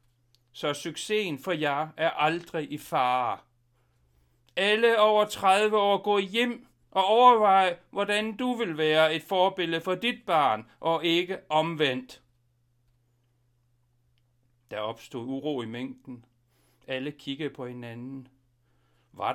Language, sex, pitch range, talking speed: Danish, male, 120-155 Hz, 120 wpm